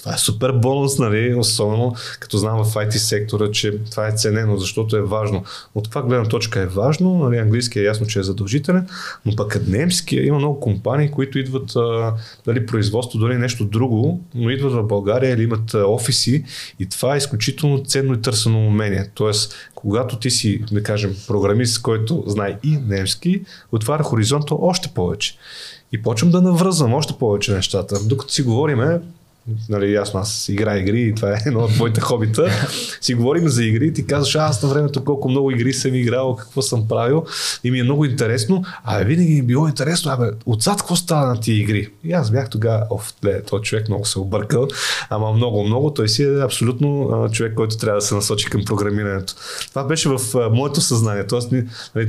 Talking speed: 185 wpm